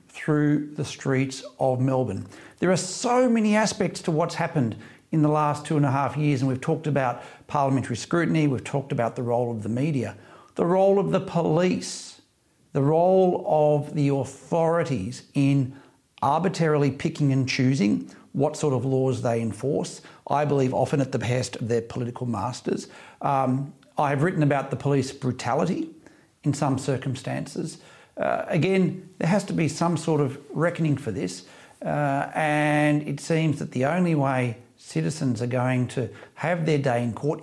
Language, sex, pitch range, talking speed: English, male, 125-160 Hz, 170 wpm